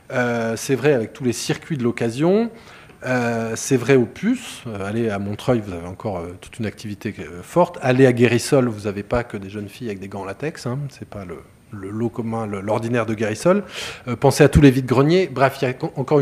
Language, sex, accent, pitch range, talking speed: French, male, French, 115-150 Hz, 240 wpm